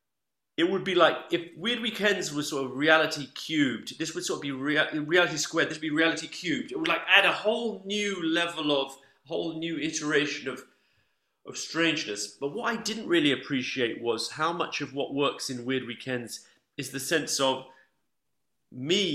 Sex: male